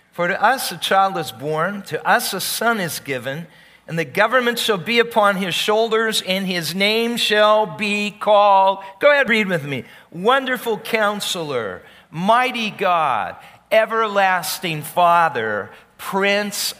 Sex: male